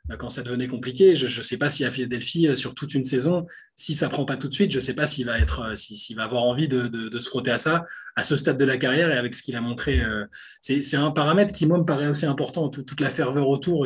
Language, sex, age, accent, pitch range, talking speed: French, male, 20-39, French, 125-160 Hz, 300 wpm